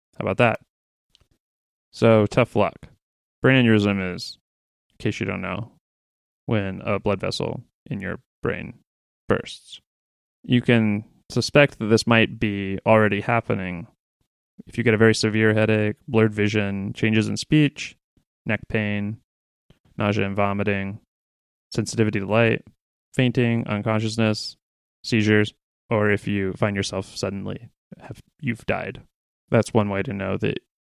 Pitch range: 105-135 Hz